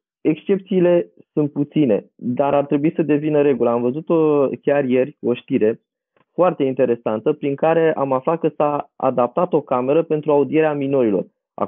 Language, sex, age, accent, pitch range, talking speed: Romanian, male, 20-39, native, 125-150 Hz, 155 wpm